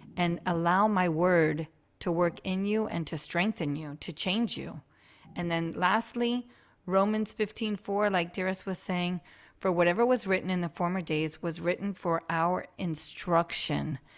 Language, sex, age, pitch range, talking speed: English, female, 30-49, 165-200 Hz, 160 wpm